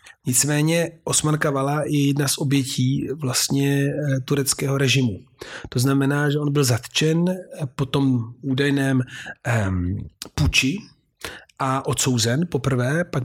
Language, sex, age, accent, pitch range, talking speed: Czech, male, 40-59, native, 130-150 Hz, 115 wpm